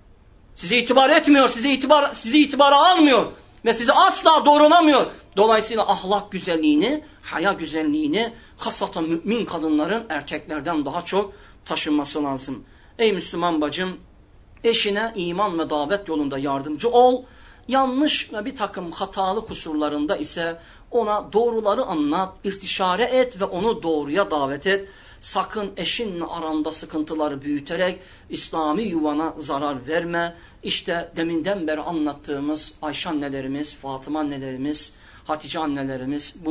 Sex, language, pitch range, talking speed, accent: male, Turkish, 150-200 Hz, 120 wpm, native